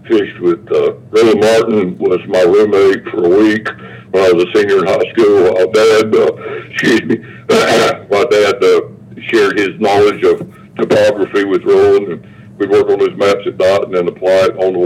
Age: 60-79